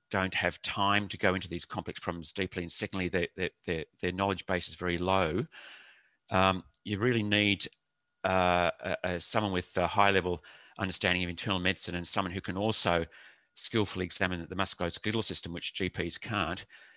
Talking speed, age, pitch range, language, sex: 165 wpm, 40-59, 90-100 Hz, English, male